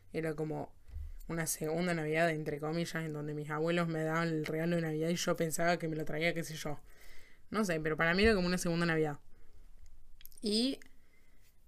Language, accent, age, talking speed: Spanish, Argentinian, 10-29, 195 wpm